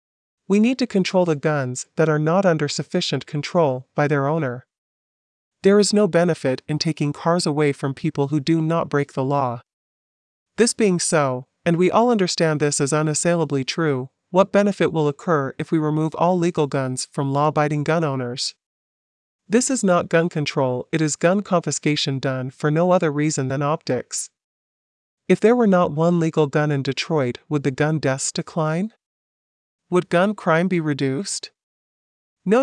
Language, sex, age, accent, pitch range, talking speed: English, male, 40-59, American, 140-180 Hz, 170 wpm